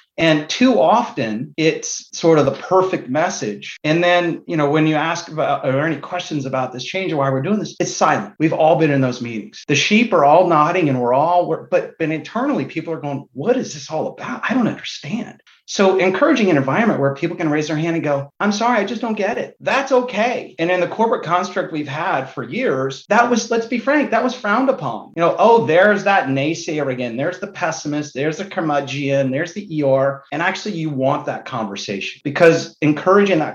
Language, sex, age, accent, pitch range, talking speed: English, male, 30-49, American, 135-180 Hz, 215 wpm